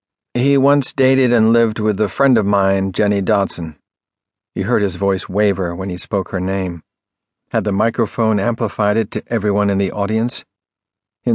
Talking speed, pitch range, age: 175 wpm, 100-125 Hz, 50-69